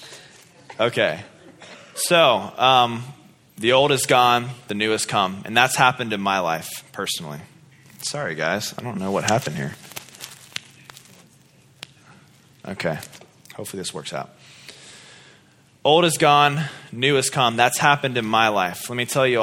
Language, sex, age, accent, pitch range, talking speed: English, male, 20-39, American, 110-140 Hz, 140 wpm